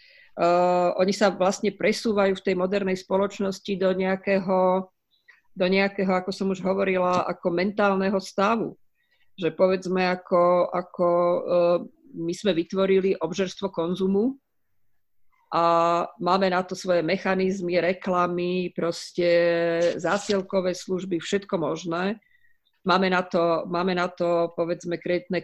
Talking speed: 120 wpm